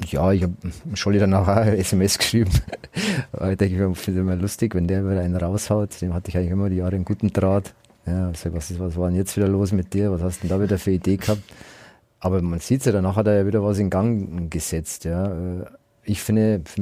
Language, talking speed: German, 245 wpm